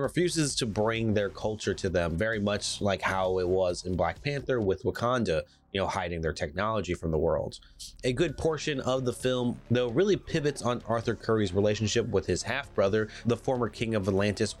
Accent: American